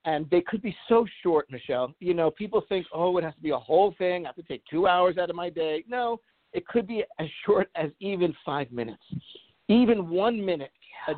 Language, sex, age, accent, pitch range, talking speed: English, male, 50-69, American, 155-190 Hz, 230 wpm